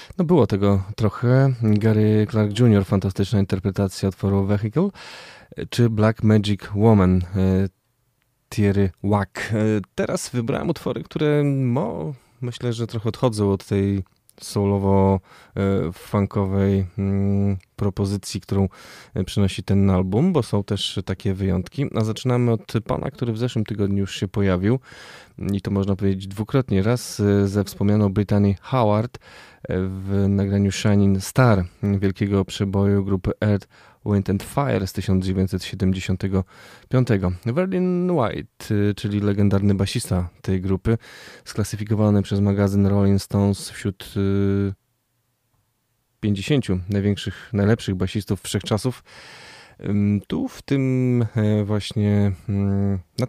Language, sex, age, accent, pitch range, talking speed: Polish, male, 20-39, native, 100-115 Hz, 105 wpm